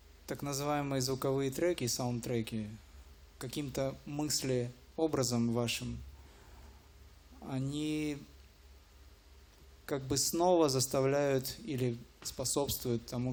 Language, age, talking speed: English, 20-39, 75 wpm